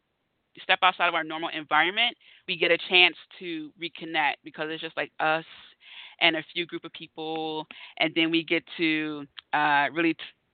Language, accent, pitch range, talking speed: English, American, 155-185 Hz, 170 wpm